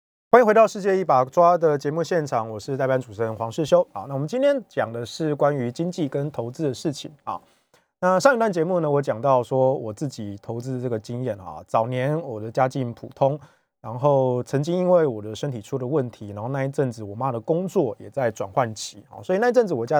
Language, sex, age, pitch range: Chinese, male, 20-39, 115-160 Hz